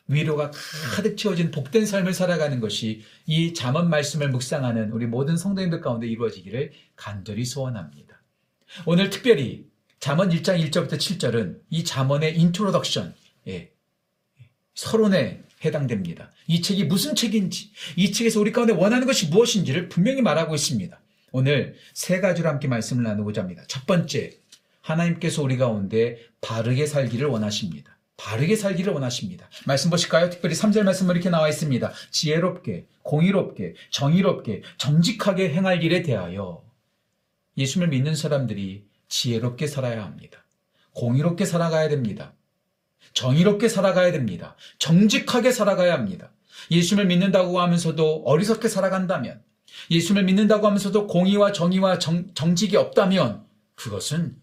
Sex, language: male, Korean